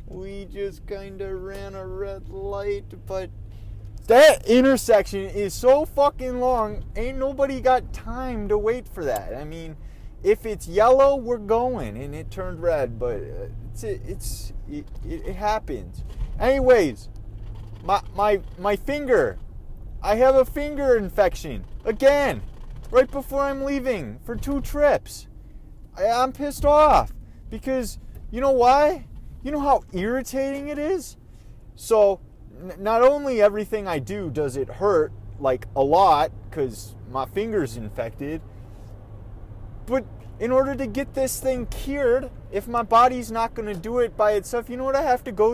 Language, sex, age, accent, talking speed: English, male, 30-49, American, 150 wpm